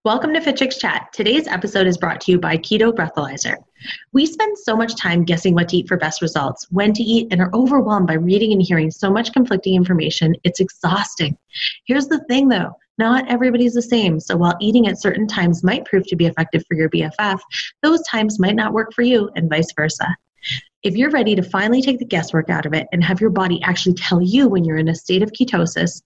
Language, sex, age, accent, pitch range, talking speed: English, female, 30-49, American, 170-230 Hz, 225 wpm